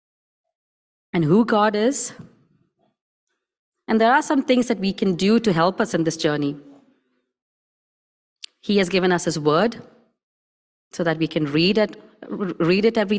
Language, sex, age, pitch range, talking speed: English, female, 30-49, 165-215 Hz, 150 wpm